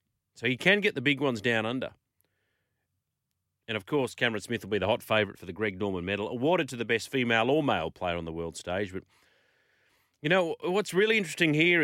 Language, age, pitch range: English, 40-59, 95-135 Hz